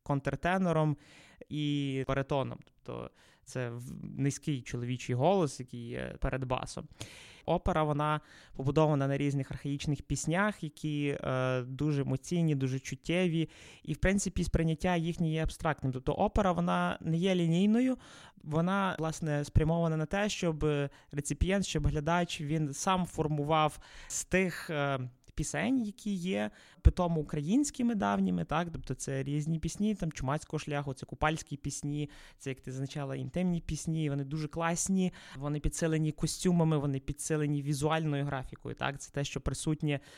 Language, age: Ukrainian, 20-39